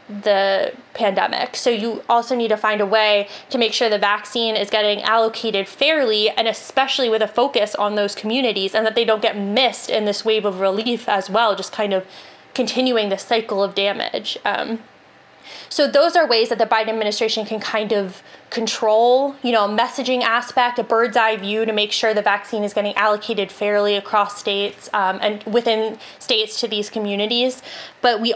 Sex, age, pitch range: female, 20-39, 205-235 Hz